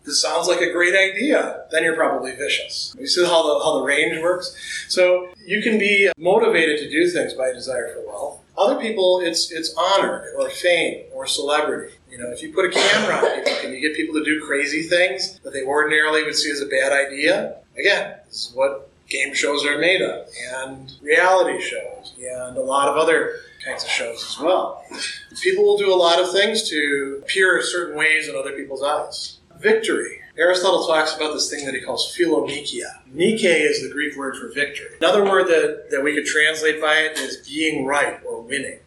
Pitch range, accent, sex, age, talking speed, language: 145-195 Hz, American, male, 30-49, 205 wpm, English